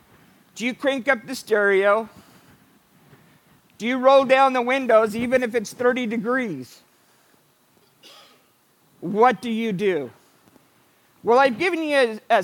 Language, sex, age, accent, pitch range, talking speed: English, male, 50-69, American, 215-270 Hz, 130 wpm